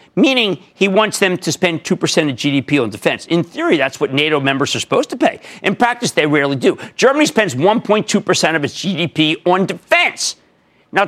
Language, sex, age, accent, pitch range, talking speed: English, male, 50-69, American, 135-225 Hz, 190 wpm